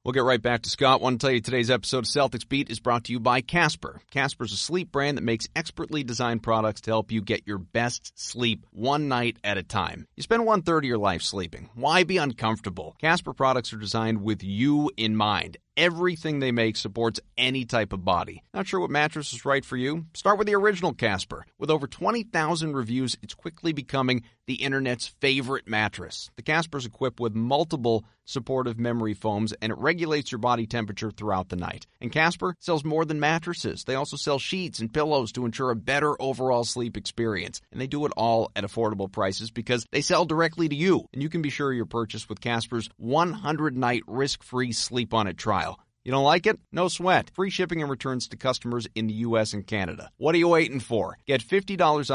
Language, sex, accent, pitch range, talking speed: English, male, American, 110-145 Hz, 210 wpm